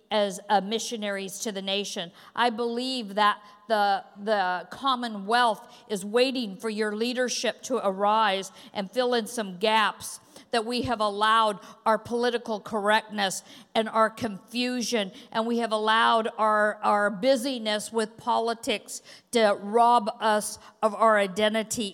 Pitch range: 200-230 Hz